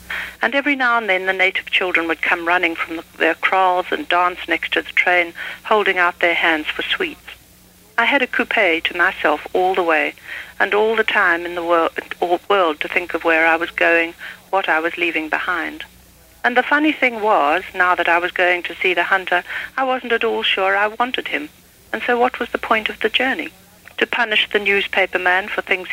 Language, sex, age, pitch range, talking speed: English, female, 60-79, 170-205 Hz, 220 wpm